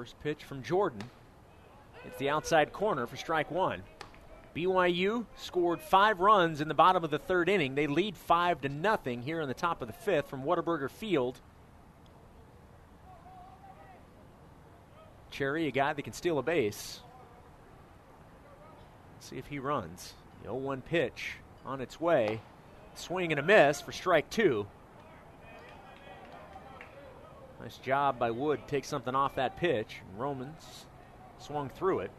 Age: 30-49